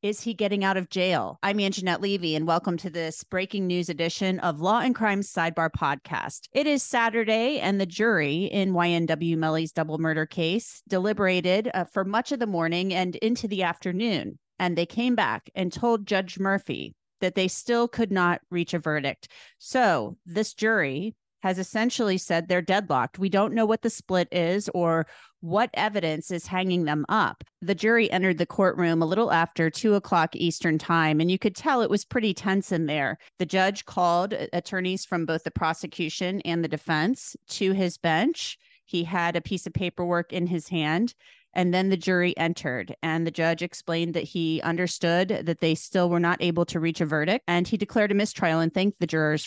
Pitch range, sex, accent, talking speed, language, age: 165-200 Hz, female, American, 190 wpm, English, 30-49